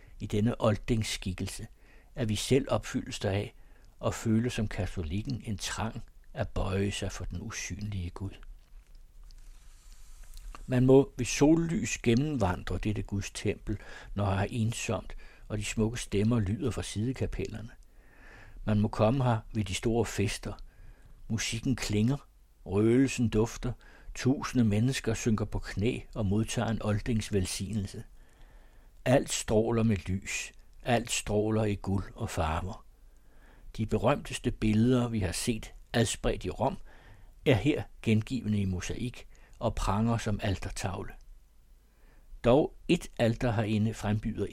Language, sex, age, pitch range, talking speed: Danish, male, 60-79, 95-115 Hz, 130 wpm